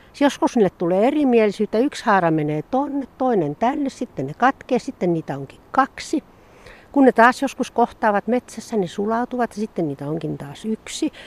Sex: female